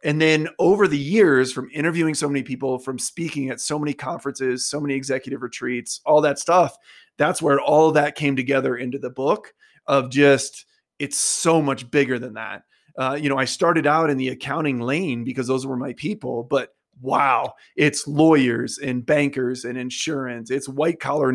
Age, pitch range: 30-49, 130-150 Hz